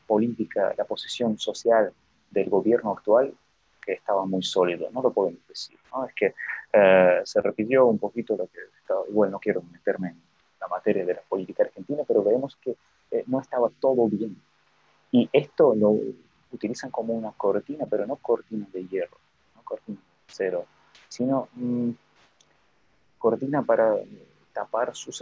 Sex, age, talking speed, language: male, 30-49, 160 wpm, Spanish